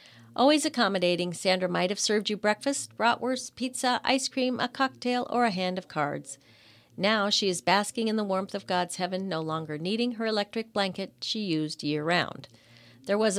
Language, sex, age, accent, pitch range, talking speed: English, female, 40-59, American, 170-225 Hz, 180 wpm